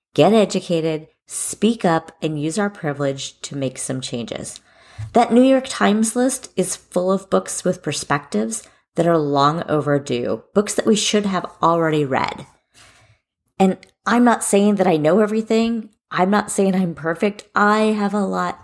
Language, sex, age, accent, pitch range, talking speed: English, female, 30-49, American, 145-205 Hz, 165 wpm